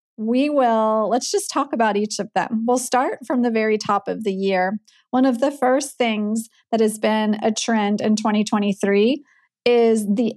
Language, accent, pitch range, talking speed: English, American, 205-250 Hz, 185 wpm